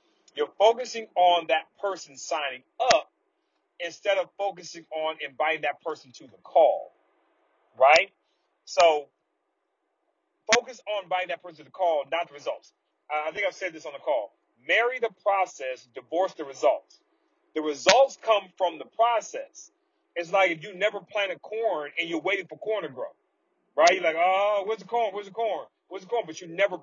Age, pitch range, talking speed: 30-49, 155-230 Hz, 180 wpm